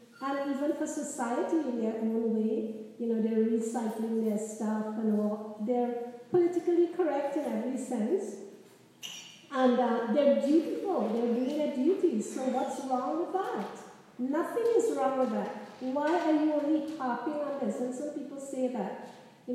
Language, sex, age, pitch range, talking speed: English, female, 50-69, 225-280 Hz, 165 wpm